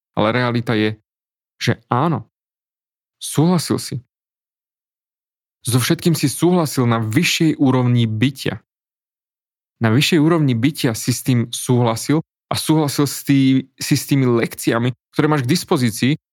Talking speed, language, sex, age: 120 wpm, Slovak, male, 30-49